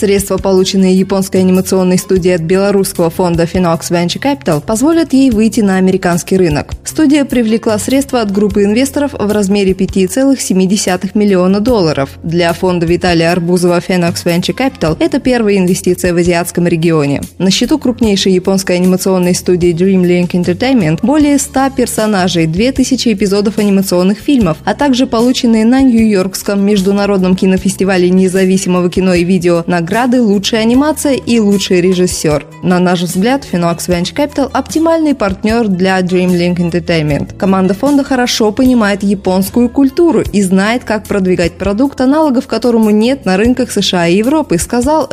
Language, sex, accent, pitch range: Russian, female, native, 180-240 Hz